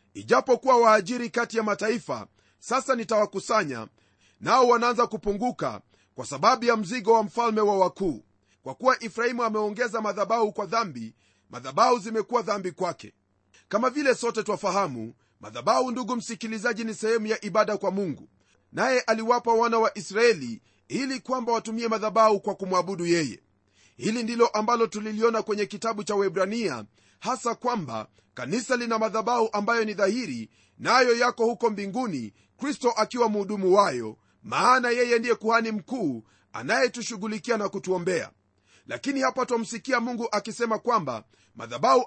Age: 40-59